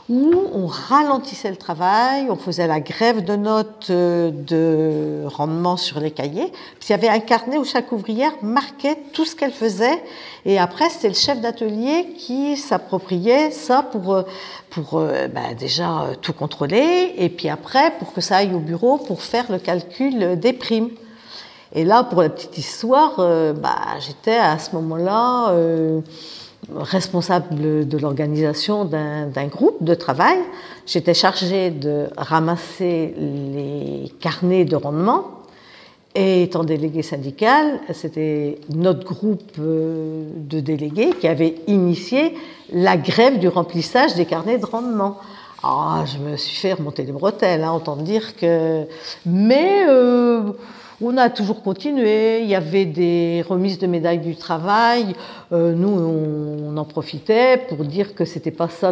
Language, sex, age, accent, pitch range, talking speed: French, female, 50-69, French, 160-230 Hz, 145 wpm